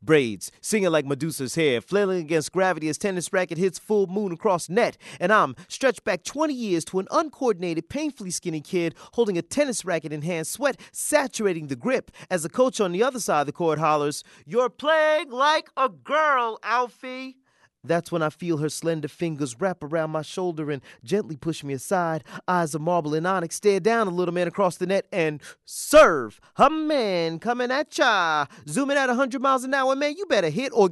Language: English